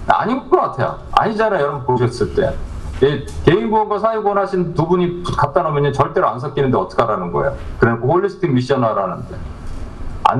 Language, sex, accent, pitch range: Korean, male, native, 120-185 Hz